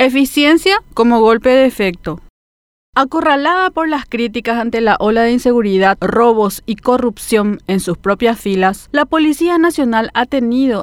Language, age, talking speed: Spanish, 40-59, 145 wpm